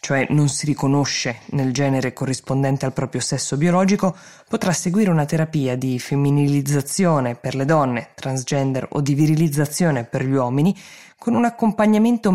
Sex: female